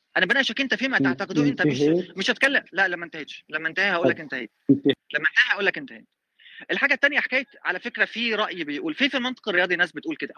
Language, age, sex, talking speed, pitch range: Arabic, 20-39, male, 215 wpm, 195-265 Hz